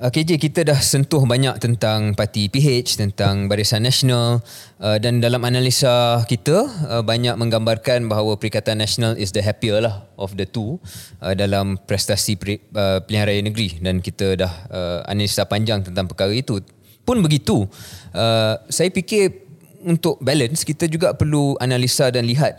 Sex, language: male, Malay